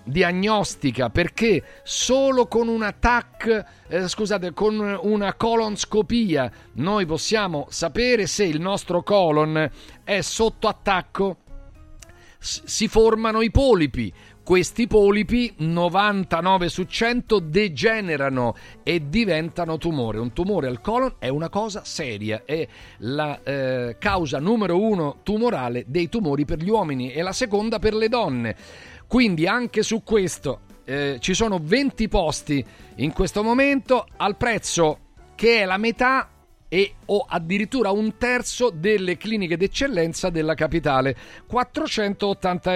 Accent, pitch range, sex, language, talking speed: native, 150-215 Hz, male, Italian, 125 wpm